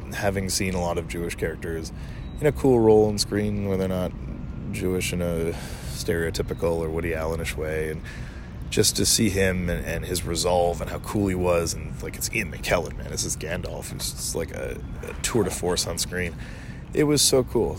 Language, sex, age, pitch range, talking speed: English, male, 20-39, 80-105 Hz, 200 wpm